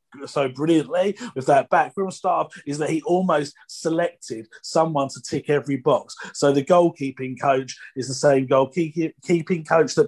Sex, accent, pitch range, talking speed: male, British, 140-170 Hz, 155 wpm